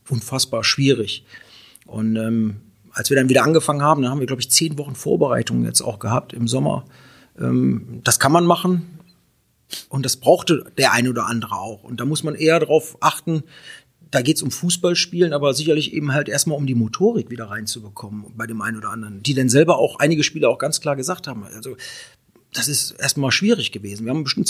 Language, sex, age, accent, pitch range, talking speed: German, male, 40-59, German, 130-155 Hz, 205 wpm